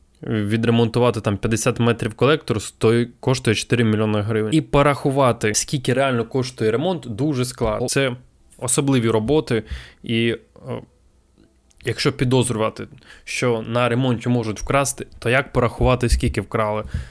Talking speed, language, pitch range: 120 wpm, Ukrainian, 105-125 Hz